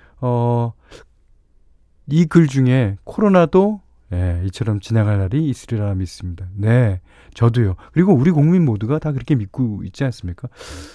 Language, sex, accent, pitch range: Korean, male, native, 100-155 Hz